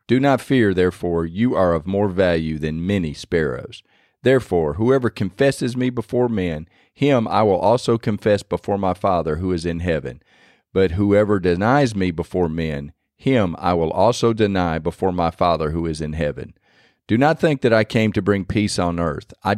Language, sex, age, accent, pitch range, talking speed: English, male, 40-59, American, 85-110 Hz, 185 wpm